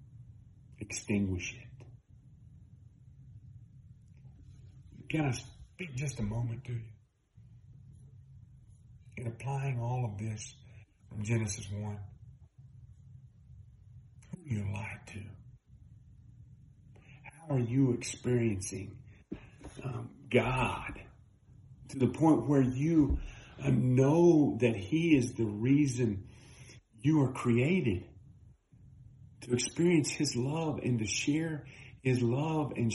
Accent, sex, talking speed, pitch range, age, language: American, male, 95 wpm, 110-130 Hz, 40-59, English